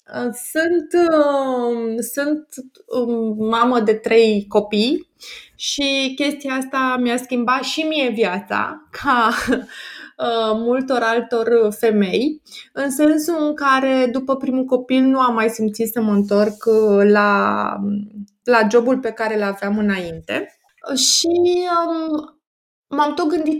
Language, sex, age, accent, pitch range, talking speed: Romanian, female, 20-39, native, 220-285 Hz, 120 wpm